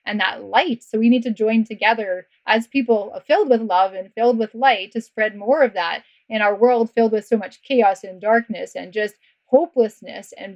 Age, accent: 20-39, American